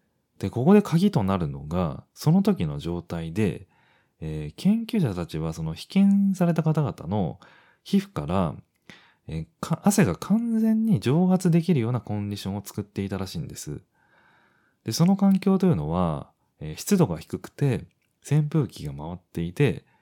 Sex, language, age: male, Japanese, 30-49